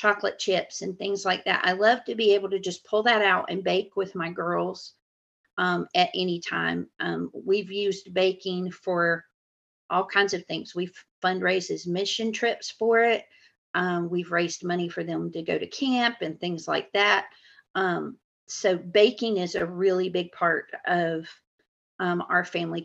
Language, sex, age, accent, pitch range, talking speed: English, female, 40-59, American, 180-210 Hz, 175 wpm